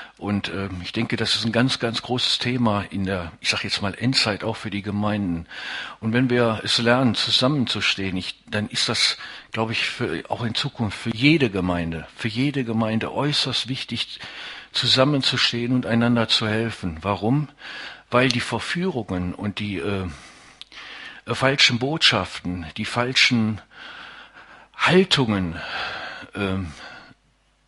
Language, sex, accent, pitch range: English, male, German, 100-130 Hz